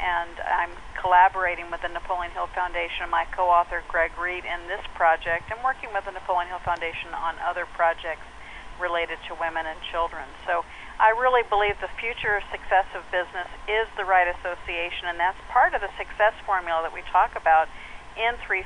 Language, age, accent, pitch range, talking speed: English, 50-69, American, 175-220 Hz, 185 wpm